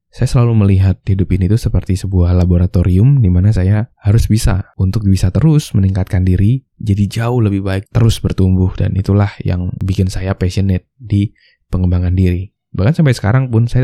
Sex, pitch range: male, 95-115 Hz